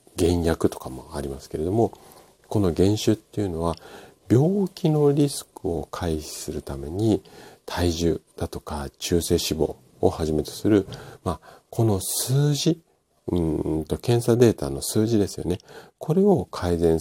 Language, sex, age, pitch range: Japanese, male, 50-69, 80-125 Hz